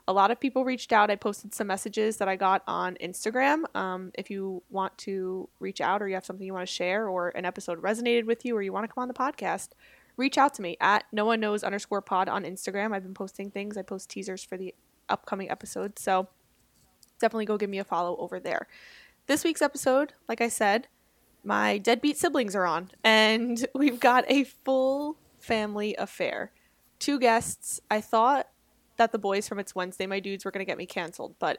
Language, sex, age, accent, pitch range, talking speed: English, female, 20-39, American, 195-235 Hz, 215 wpm